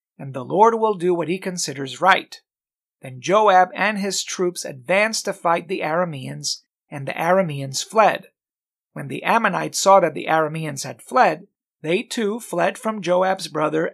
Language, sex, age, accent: English, male, 40-59, American